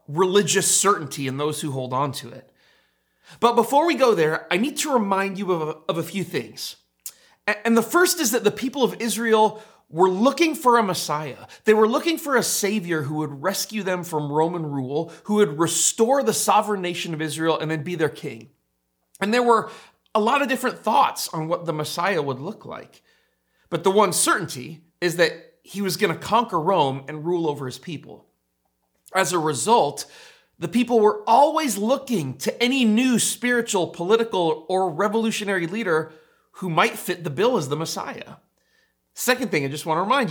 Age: 30-49